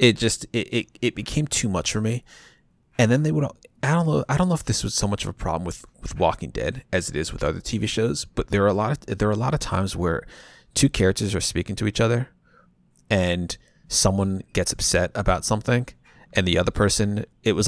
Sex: male